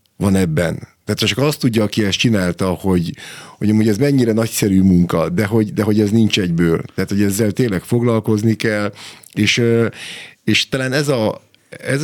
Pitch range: 95-120 Hz